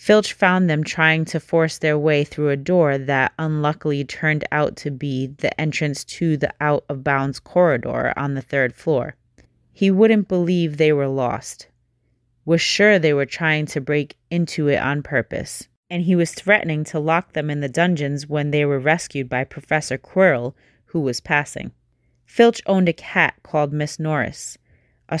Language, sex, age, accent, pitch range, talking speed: English, female, 30-49, American, 135-170 Hz, 170 wpm